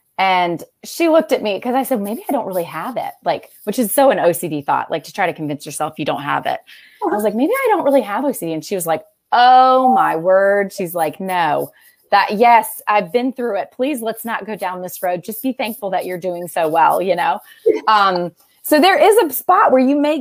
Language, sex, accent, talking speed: English, female, American, 245 wpm